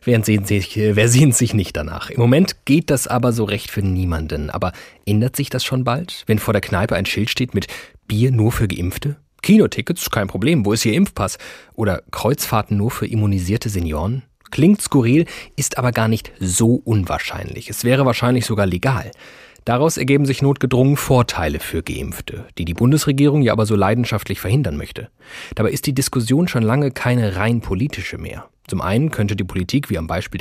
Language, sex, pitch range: German, male, 100-130 Hz